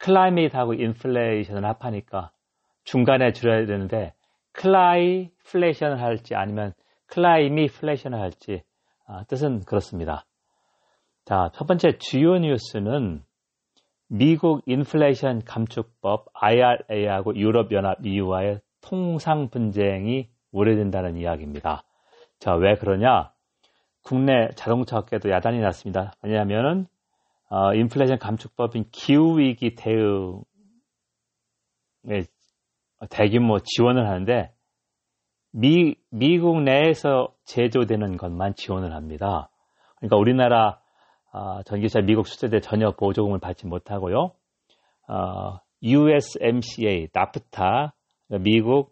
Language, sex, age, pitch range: Korean, male, 40-59, 100-135 Hz